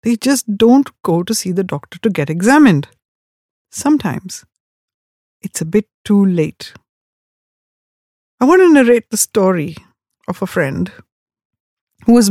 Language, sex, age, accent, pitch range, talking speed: English, female, 50-69, Indian, 170-220 Hz, 135 wpm